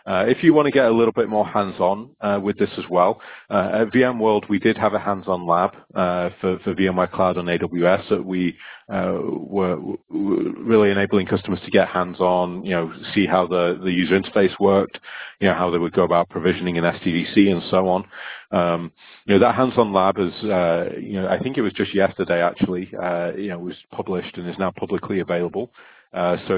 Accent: British